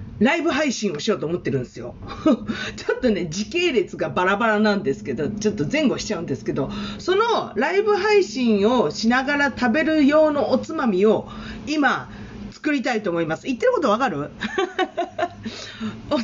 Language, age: Japanese, 40-59